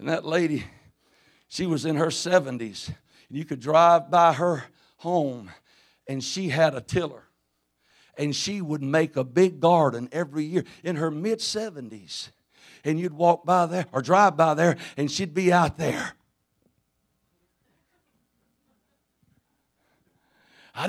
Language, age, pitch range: English, 60-79, 155-220 Hz